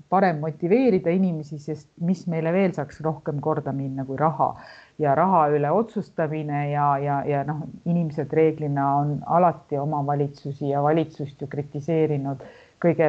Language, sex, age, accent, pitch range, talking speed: English, female, 50-69, Finnish, 145-170 Hz, 145 wpm